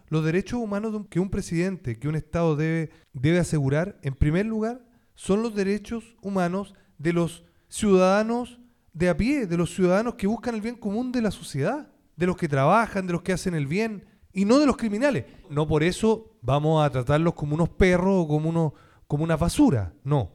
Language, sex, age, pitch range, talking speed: Spanish, male, 30-49, 145-200 Hz, 190 wpm